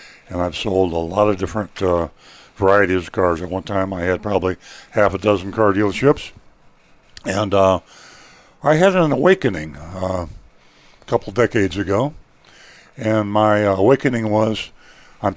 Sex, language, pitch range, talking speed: male, English, 95-110 Hz, 150 wpm